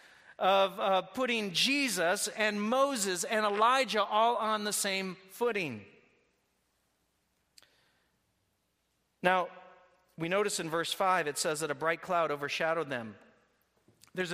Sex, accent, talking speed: male, American, 115 wpm